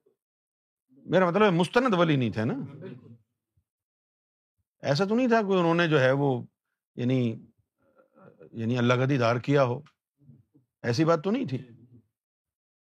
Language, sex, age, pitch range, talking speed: Urdu, male, 50-69, 120-175 Hz, 135 wpm